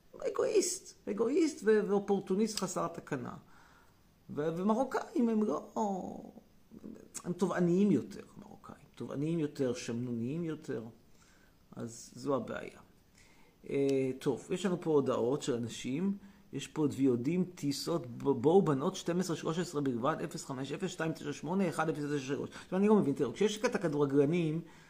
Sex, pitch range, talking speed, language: male, 140-200 Hz, 105 wpm, Hebrew